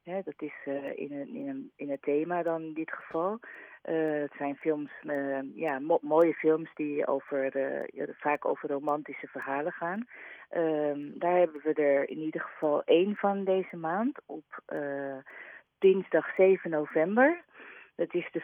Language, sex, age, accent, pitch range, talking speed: Dutch, female, 40-59, Dutch, 150-180 Hz, 175 wpm